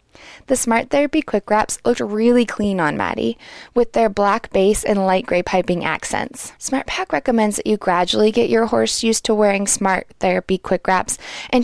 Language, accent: English, American